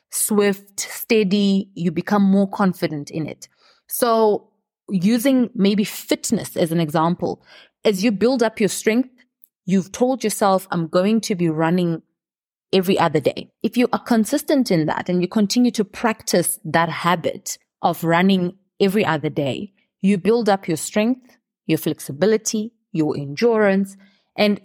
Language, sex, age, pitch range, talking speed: English, female, 30-49, 175-220 Hz, 145 wpm